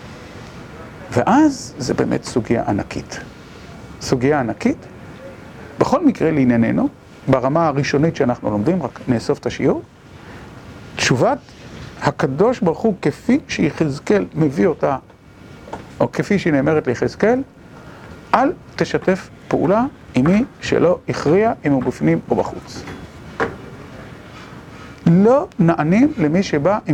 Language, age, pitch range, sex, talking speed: Hebrew, 50-69, 135-205 Hz, male, 105 wpm